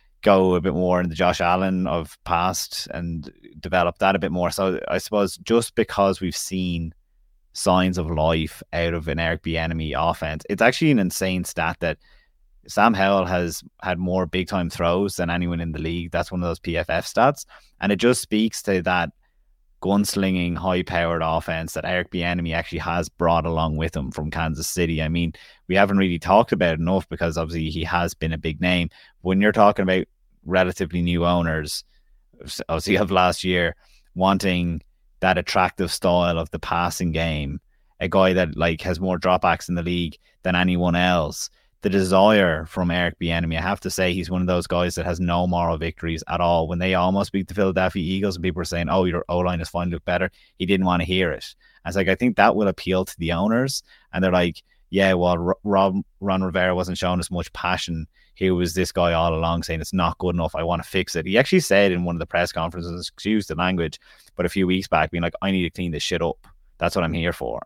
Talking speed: 215 wpm